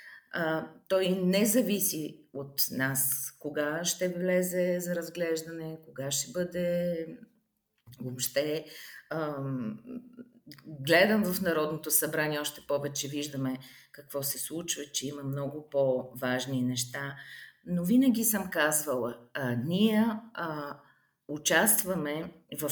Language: Bulgarian